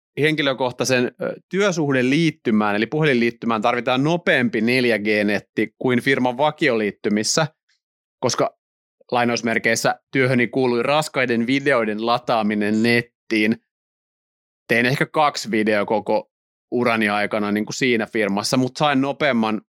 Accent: native